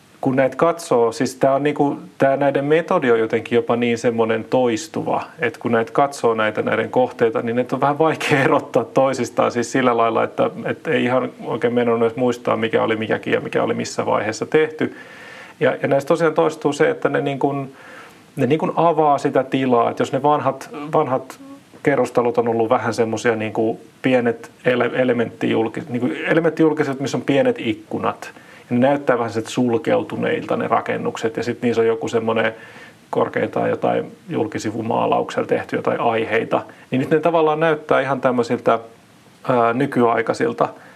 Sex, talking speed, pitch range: male, 160 wpm, 115-145 Hz